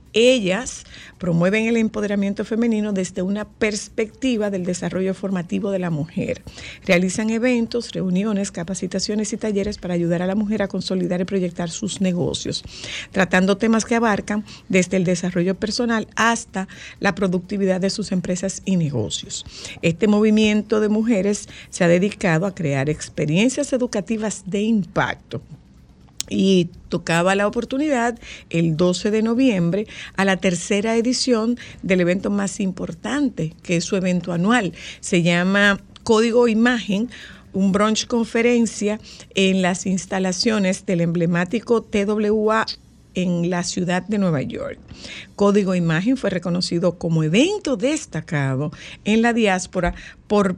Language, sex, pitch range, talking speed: Spanish, female, 180-220 Hz, 130 wpm